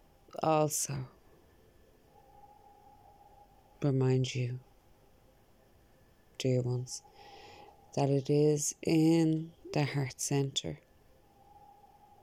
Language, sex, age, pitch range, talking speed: English, female, 30-49, 130-165 Hz, 60 wpm